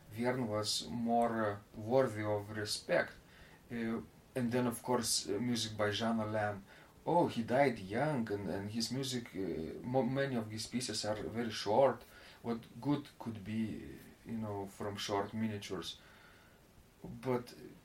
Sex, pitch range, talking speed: male, 105-130 Hz, 150 wpm